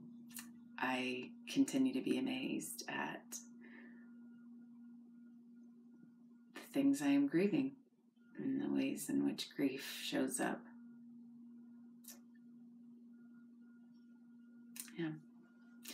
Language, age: English, 30-49